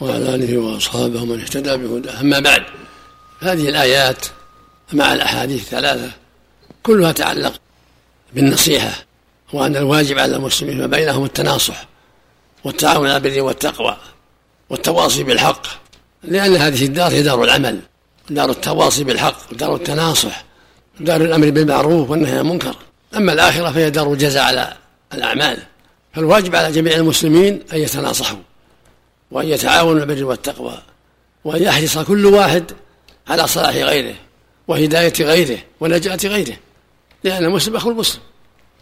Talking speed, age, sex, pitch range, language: 115 wpm, 60-79, male, 120-165 Hz, Arabic